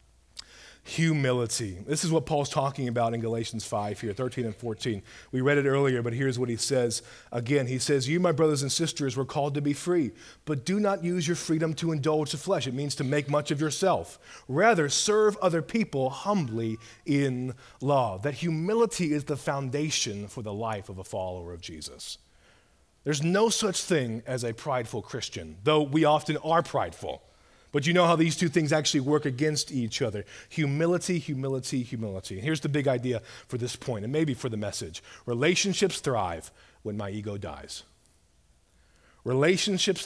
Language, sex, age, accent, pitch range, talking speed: English, male, 30-49, American, 110-155 Hz, 180 wpm